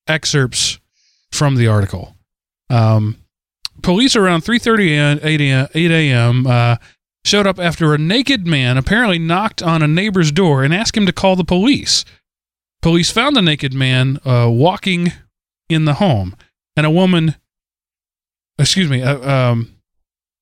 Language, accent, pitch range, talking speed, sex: English, American, 115-185 Hz, 140 wpm, male